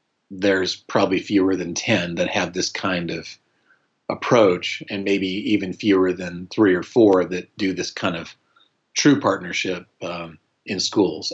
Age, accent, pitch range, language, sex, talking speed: 40-59, American, 90-105 Hz, English, male, 155 wpm